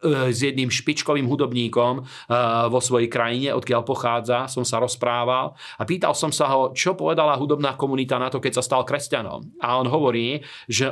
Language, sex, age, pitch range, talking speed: Slovak, male, 40-59, 120-140 Hz, 170 wpm